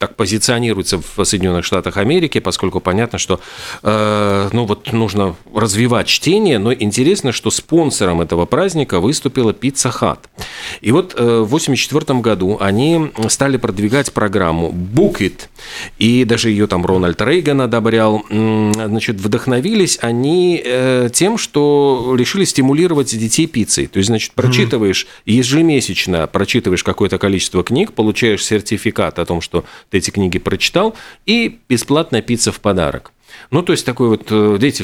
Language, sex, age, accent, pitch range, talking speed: Russian, male, 40-59, native, 100-130 Hz, 135 wpm